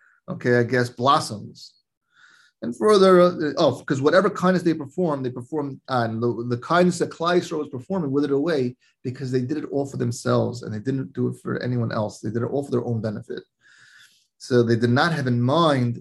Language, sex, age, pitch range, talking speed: English, male, 30-49, 120-155 Hz, 215 wpm